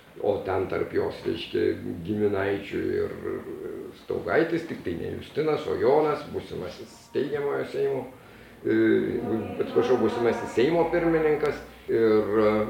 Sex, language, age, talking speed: male, English, 50-69, 105 wpm